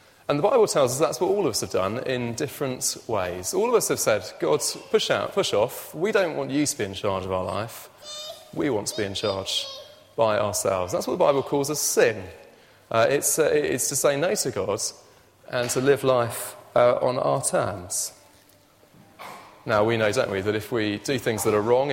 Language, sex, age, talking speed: English, male, 30-49, 220 wpm